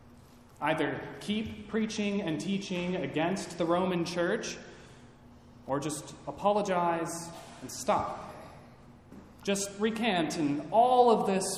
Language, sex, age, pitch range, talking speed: English, male, 30-49, 125-185 Hz, 105 wpm